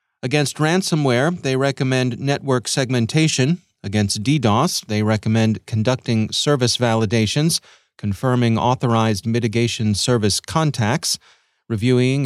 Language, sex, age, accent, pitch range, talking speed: English, male, 30-49, American, 110-135 Hz, 95 wpm